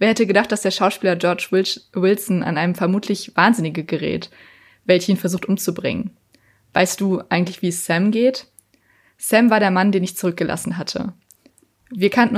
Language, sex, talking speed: German, female, 160 wpm